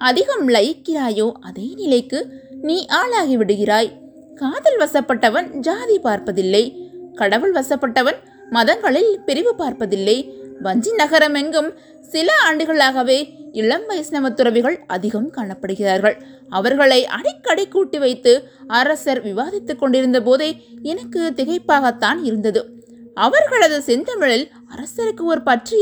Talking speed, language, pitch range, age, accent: 95 wpm, Tamil, 245-315 Hz, 20-39, native